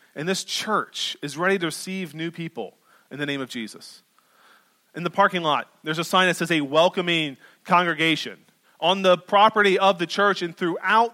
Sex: male